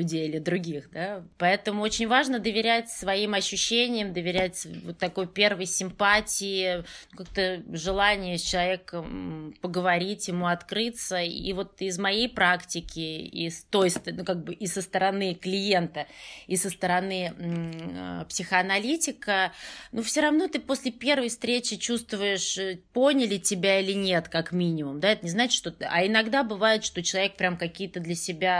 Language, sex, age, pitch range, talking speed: Russian, female, 20-39, 180-225 Hz, 145 wpm